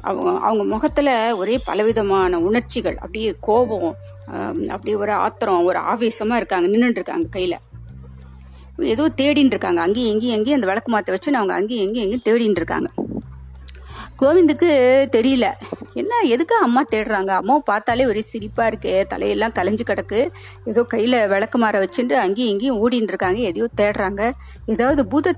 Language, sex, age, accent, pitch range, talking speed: Tamil, female, 30-49, native, 185-250 Hz, 140 wpm